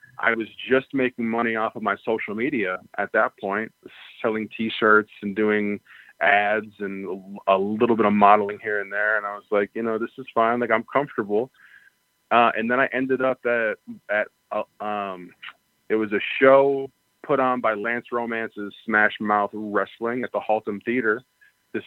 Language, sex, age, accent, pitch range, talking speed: English, male, 20-39, American, 105-120 Hz, 180 wpm